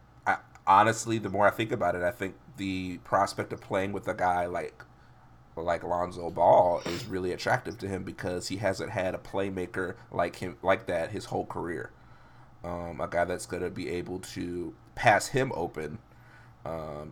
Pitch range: 90-120 Hz